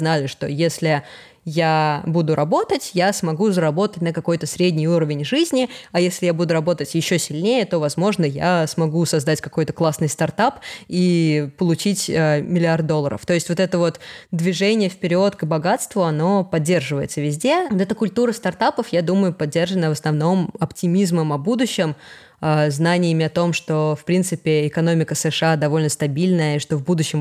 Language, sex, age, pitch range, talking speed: Russian, female, 20-39, 155-185 Hz, 155 wpm